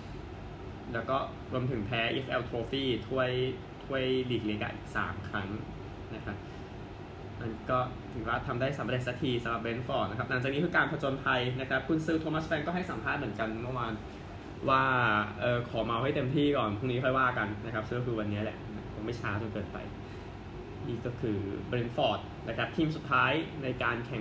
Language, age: Thai, 20-39